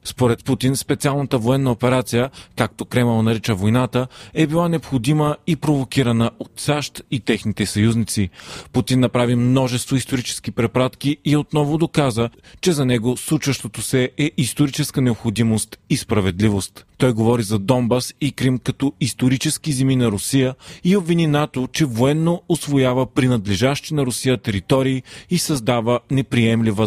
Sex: male